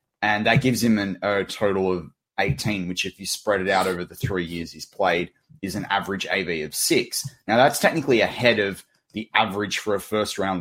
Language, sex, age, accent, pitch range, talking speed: English, male, 20-39, Australian, 95-120 Hz, 210 wpm